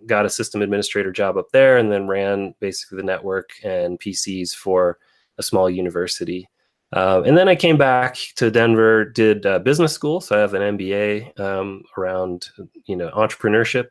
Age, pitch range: 30-49, 95-120 Hz